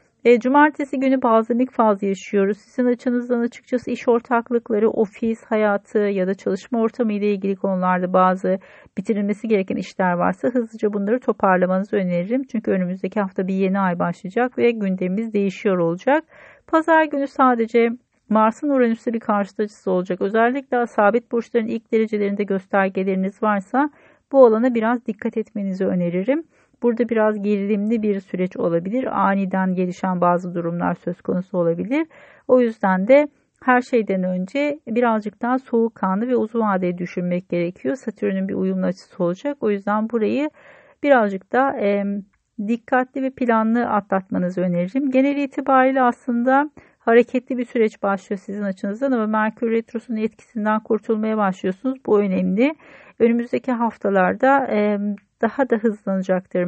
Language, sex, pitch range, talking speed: Turkish, female, 195-245 Hz, 135 wpm